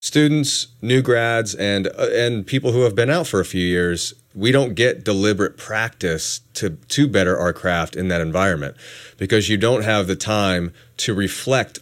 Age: 30-49